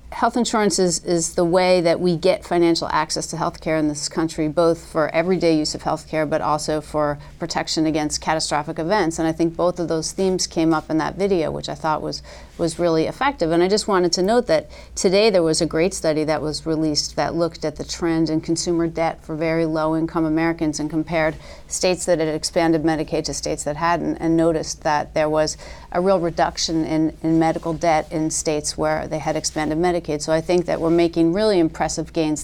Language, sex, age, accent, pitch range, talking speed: English, female, 40-59, American, 155-170 Hz, 215 wpm